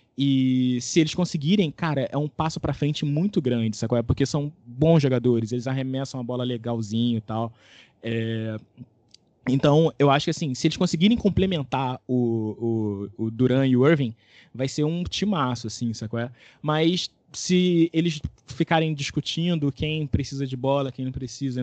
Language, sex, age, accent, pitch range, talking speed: Portuguese, male, 20-39, Brazilian, 120-160 Hz, 170 wpm